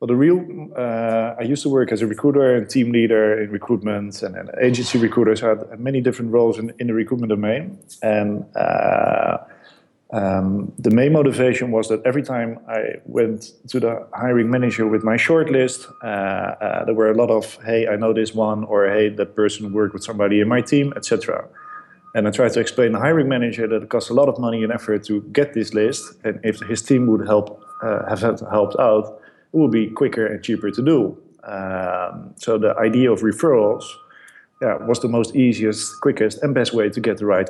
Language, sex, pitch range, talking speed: English, male, 105-125 Hz, 210 wpm